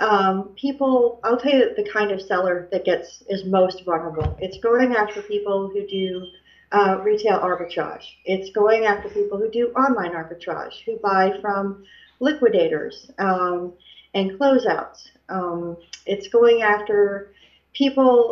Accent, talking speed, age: American, 140 wpm, 40-59